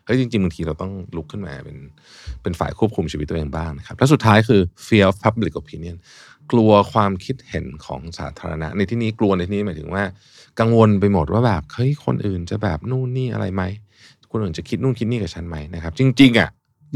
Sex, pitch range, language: male, 90-120 Hz, Thai